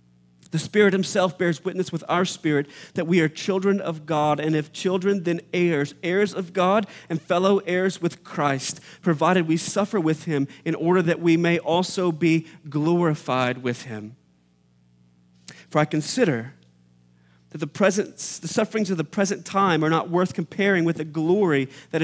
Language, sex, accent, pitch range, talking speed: English, male, American, 145-185 Hz, 165 wpm